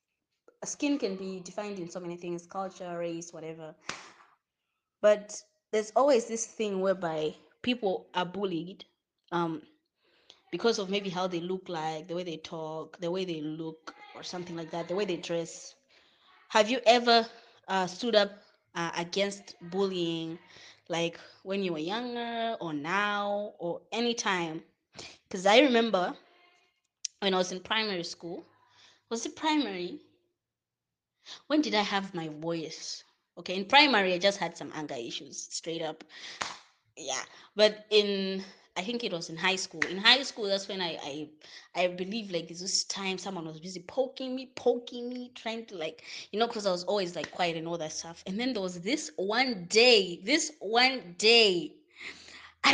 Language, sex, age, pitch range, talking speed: English, female, 20-39, 170-235 Hz, 165 wpm